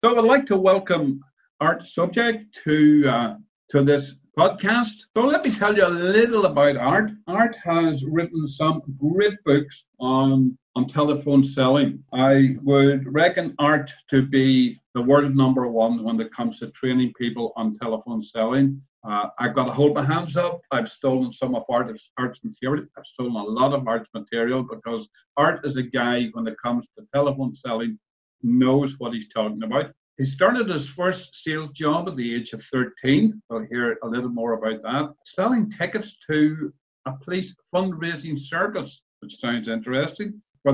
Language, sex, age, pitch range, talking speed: English, male, 50-69, 120-165 Hz, 170 wpm